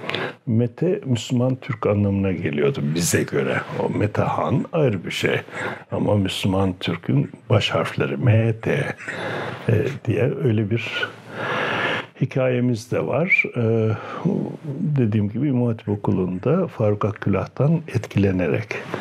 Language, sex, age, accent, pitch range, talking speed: Turkish, male, 60-79, native, 100-130 Hz, 100 wpm